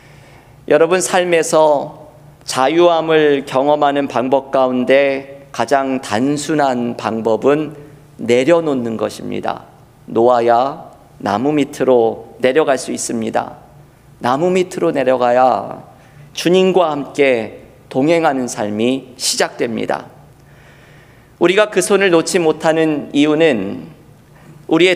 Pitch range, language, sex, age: 130-165 Hz, Korean, male, 40-59